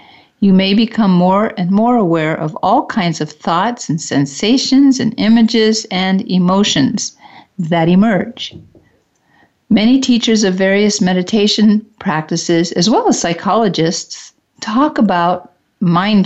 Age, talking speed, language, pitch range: 50-69, 120 wpm, English, 175-225 Hz